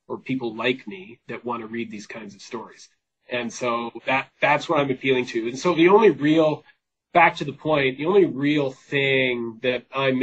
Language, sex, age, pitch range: English, male, 30-49, 115-135 Hz